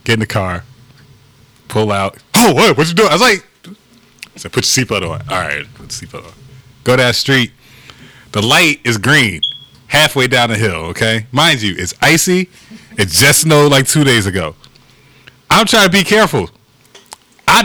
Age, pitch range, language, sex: 20-39, 125-190 Hz, English, male